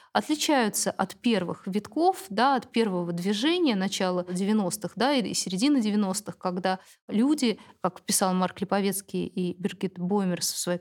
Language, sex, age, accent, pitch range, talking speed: Russian, female, 20-39, native, 190-225 Hz, 140 wpm